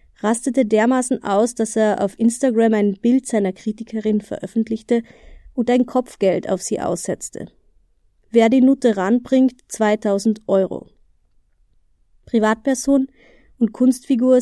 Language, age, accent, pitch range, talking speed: German, 20-39, German, 210-245 Hz, 110 wpm